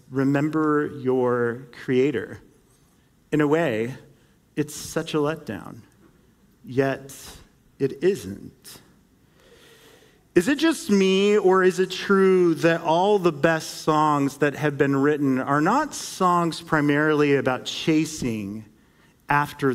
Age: 40-59